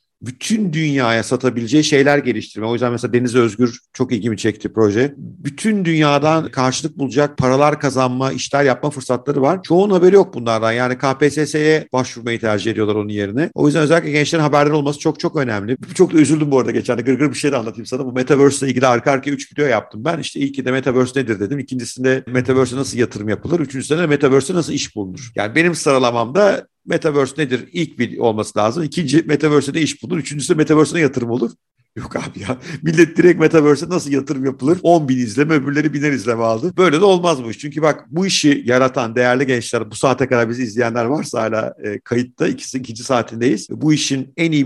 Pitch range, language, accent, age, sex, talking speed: 120-150 Hz, Turkish, native, 50-69, male, 190 wpm